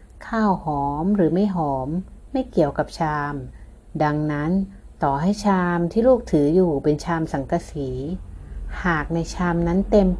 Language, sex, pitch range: Thai, female, 150-190 Hz